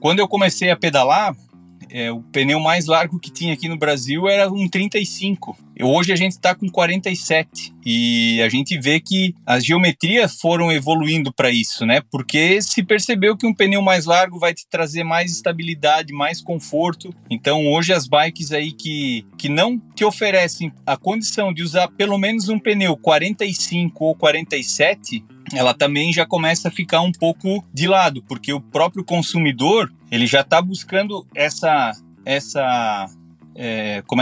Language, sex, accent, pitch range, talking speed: English, male, Brazilian, 145-190 Hz, 160 wpm